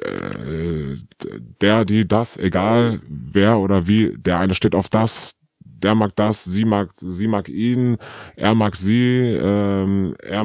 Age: 20-39